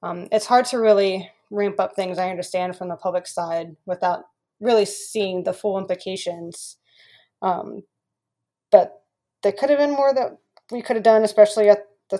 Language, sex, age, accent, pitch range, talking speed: English, female, 20-39, American, 180-205 Hz, 170 wpm